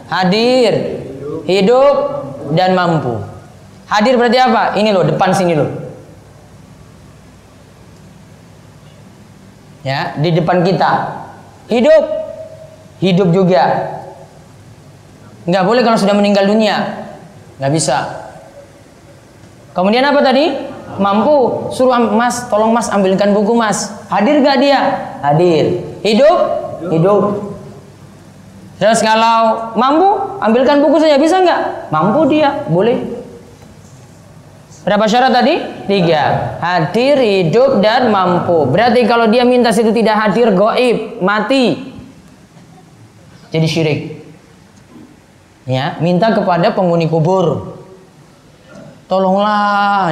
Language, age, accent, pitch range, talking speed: Indonesian, 20-39, native, 165-235 Hz, 95 wpm